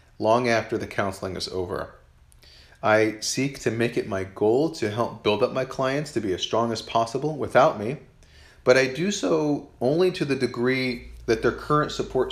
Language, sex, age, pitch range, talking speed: English, male, 30-49, 100-125 Hz, 190 wpm